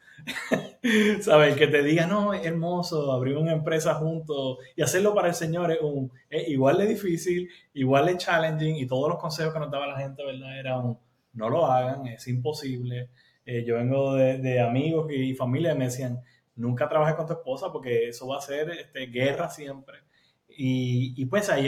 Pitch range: 125-150 Hz